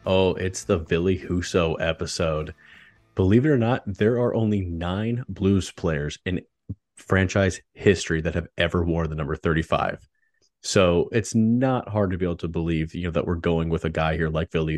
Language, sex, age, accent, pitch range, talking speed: English, male, 30-49, American, 80-95 Hz, 185 wpm